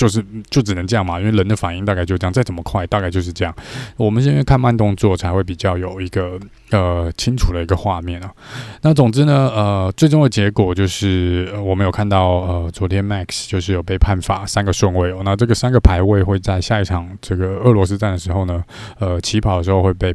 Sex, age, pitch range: male, 20-39, 95-115 Hz